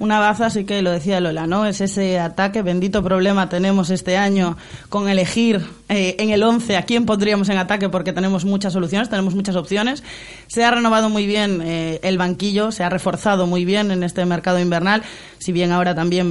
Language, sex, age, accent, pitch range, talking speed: Spanish, female, 20-39, Spanish, 180-210 Hz, 200 wpm